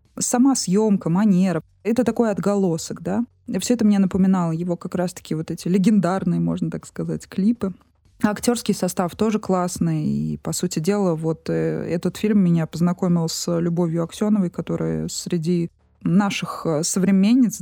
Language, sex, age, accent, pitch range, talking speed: Russian, female, 20-39, native, 170-210 Hz, 140 wpm